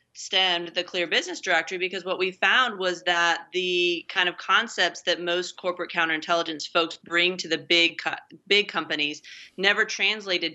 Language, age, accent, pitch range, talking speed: English, 30-49, American, 160-185 Hz, 165 wpm